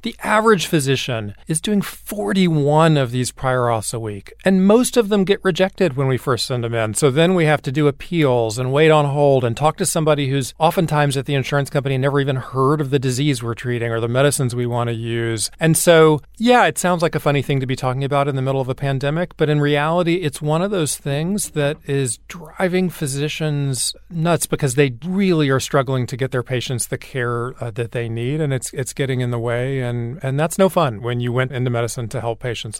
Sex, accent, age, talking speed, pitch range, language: male, American, 40-59, 235 wpm, 115-150 Hz, English